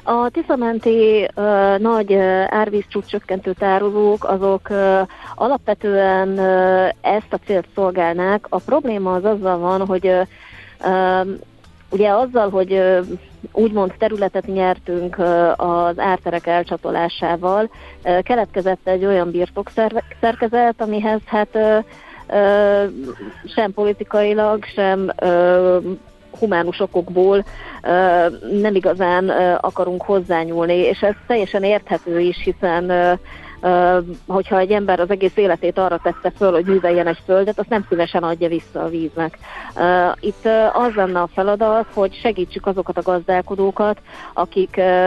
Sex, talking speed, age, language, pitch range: female, 120 wpm, 30-49, Hungarian, 180-205 Hz